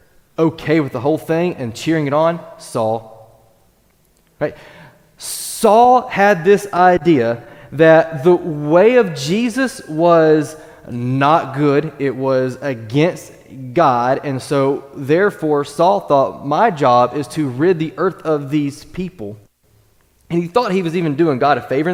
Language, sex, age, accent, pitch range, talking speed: English, male, 20-39, American, 135-175 Hz, 140 wpm